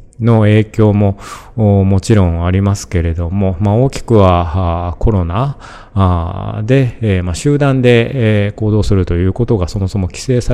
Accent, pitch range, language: native, 90-110 Hz, Japanese